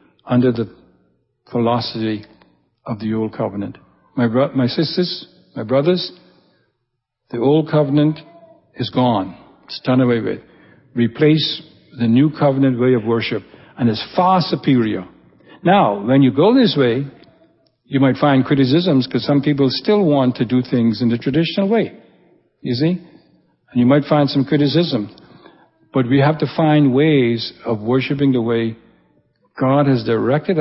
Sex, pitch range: male, 115-150 Hz